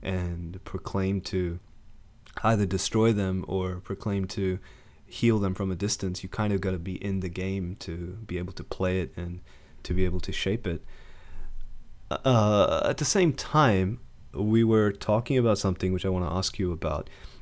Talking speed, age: 185 wpm, 20-39